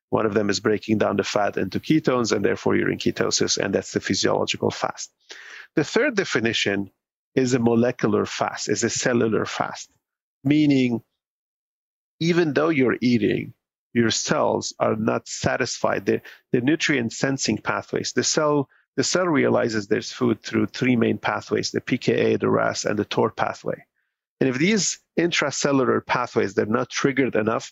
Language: English